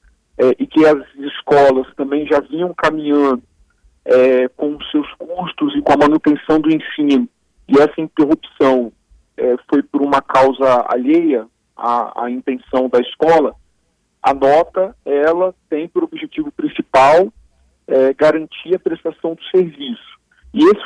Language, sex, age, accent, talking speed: Portuguese, male, 40-59, Brazilian, 125 wpm